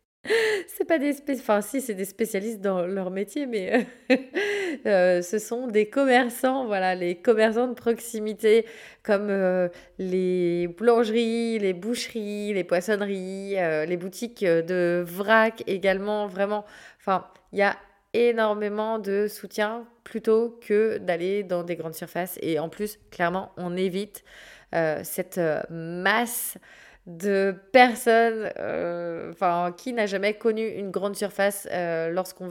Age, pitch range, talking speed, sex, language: 20-39, 185-230 Hz, 140 wpm, female, French